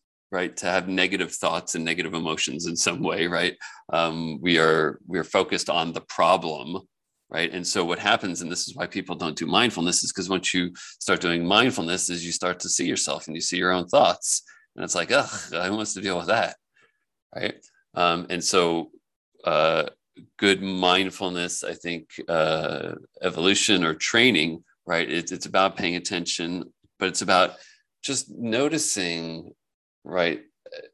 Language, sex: English, male